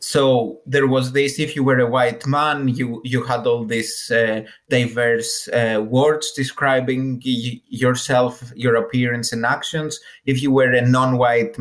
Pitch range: 115-135 Hz